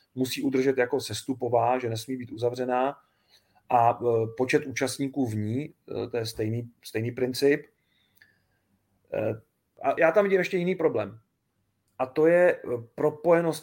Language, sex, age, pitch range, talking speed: Czech, male, 30-49, 120-155 Hz, 130 wpm